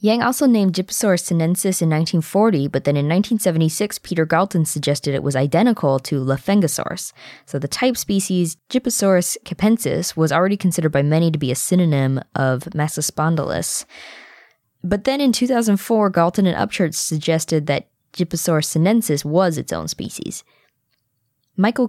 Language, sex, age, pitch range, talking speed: English, female, 20-39, 140-185 Hz, 145 wpm